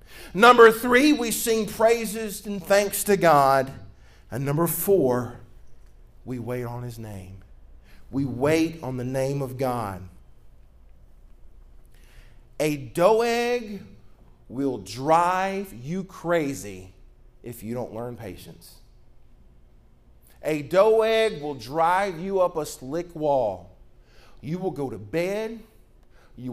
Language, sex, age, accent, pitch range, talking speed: English, male, 40-59, American, 125-200 Hz, 120 wpm